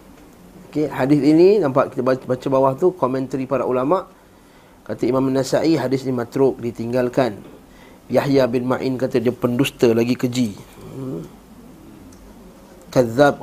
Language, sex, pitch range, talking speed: Malay, male, 125-155 Hz, 135 wpm